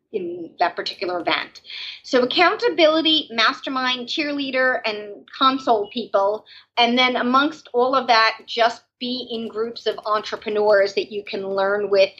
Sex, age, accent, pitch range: female, 40-59, American, 220-295 Hz